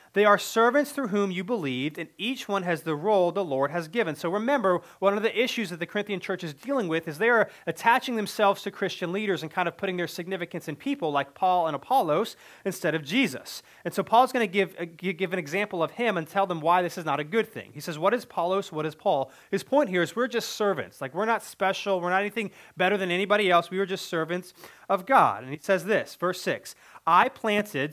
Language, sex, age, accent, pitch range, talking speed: English, male, 30-49, American, 165-210 Hz, 245 wpm